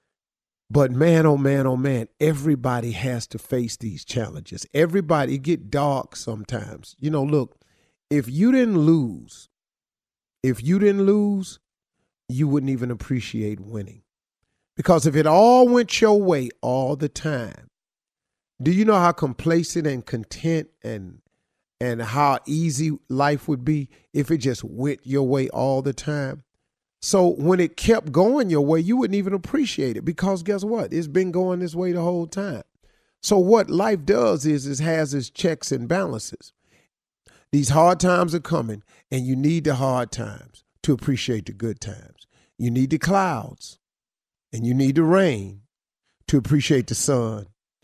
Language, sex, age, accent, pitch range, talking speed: English, male, 40-59, American, 125-170 Hz, 160 wpm